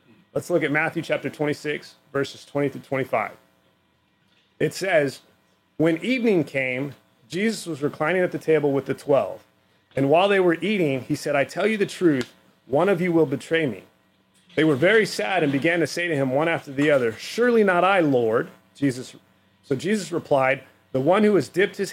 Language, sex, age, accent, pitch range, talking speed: English, male, 30-49, American, 125-175 Hz, 190 wpm